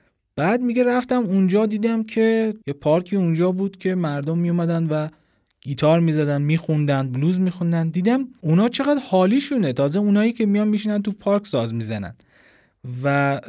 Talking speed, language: 145 wpm, Persian